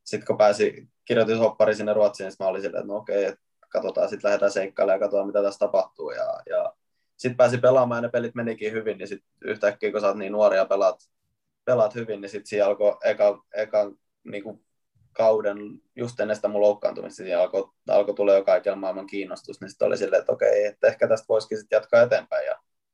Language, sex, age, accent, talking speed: Finnish, male, 20-39, native, 195 wpm